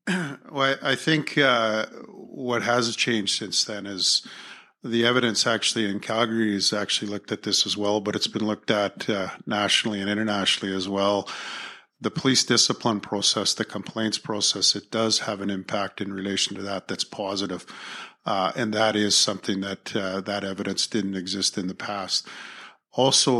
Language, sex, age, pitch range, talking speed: English, male, 50-69, 100-115 Hz, 170 wpm